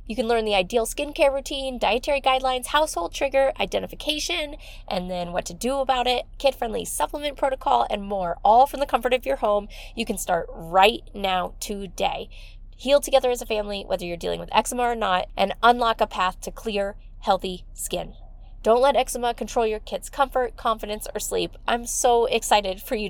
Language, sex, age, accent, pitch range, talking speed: English, female, 20-39, American, 190-255 Hz, 185 wpm